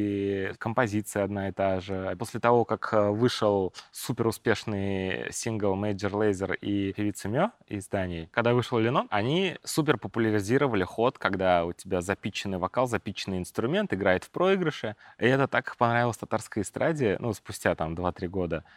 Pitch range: 95-115 Hz